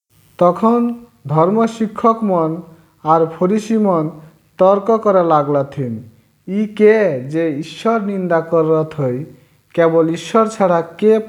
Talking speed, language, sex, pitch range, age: 120 wpm, English, male, 145-190 Hz, 50-69